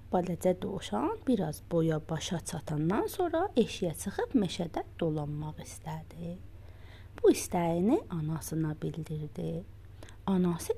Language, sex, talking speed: Persian, female, 100 wpm